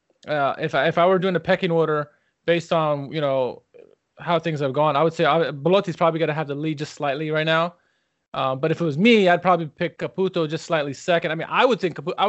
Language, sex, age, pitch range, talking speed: English, male, 20-39, 150-185 Hz, 250 wpm